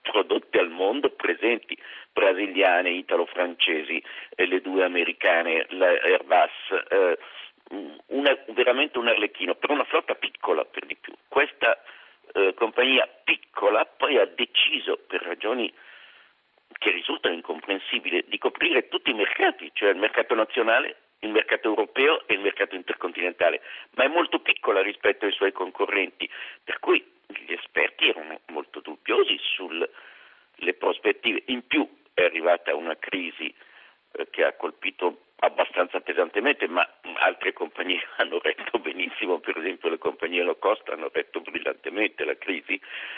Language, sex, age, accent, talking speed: Italian, male, 50-69, native, 135 wpm